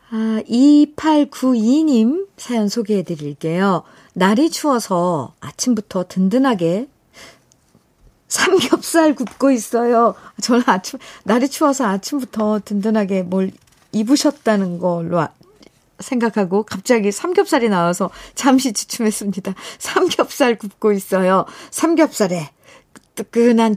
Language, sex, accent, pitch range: Korean, female, native, 180-235 Hz